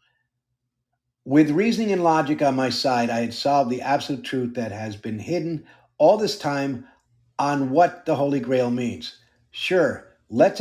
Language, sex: English, male